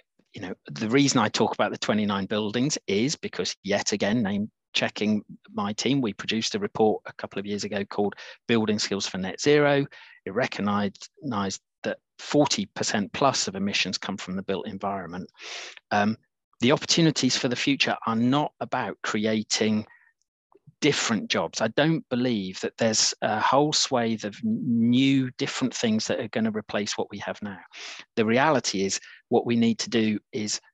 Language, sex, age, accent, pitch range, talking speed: English, male, 40-59, British, 105-150 Hz, 170 wpm